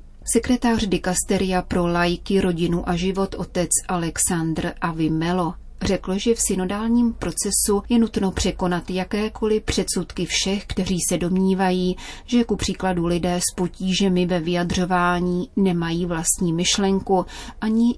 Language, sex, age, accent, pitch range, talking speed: Czech, female, 30-49, native, 175-200 Hz, 120 wpm